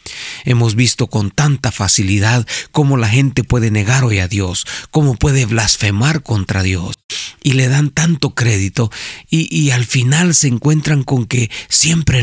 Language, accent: Spanish, Mexican